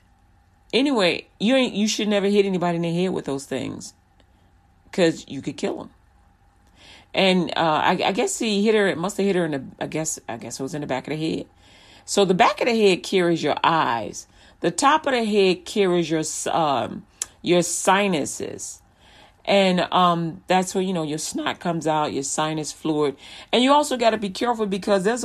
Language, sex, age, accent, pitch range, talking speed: English, female, 40-59, American, 145-195 Hz, 205 wpm